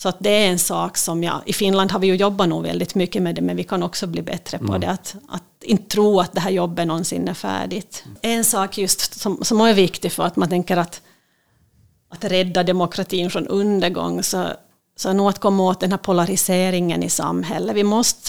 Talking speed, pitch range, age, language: 225 wpm, 175-200 Hz, 30-49, Swedish